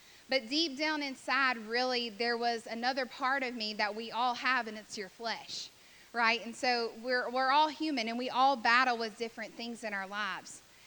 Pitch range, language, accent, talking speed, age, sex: 225-270 Hz, English, American, 200 wpm, 10-29, female